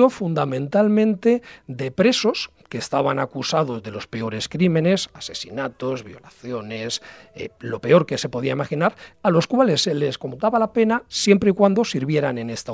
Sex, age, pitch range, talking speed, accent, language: male, 40-59, 130-185 Hz, 155 wpm, Spanish, Spanish